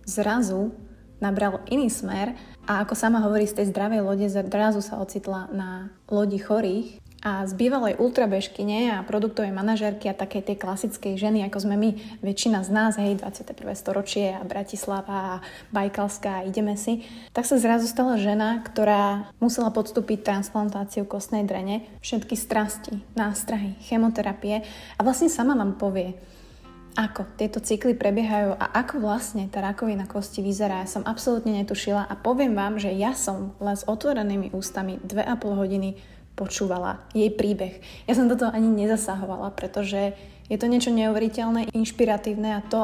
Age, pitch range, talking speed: 20-39, 200-225 Hz, 155 wpm